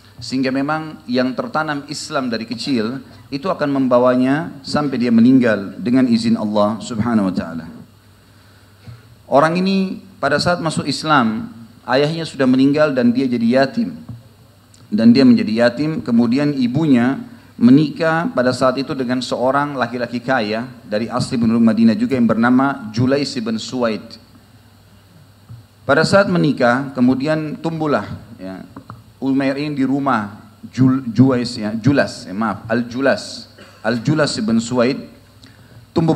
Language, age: Indonesian, 40-59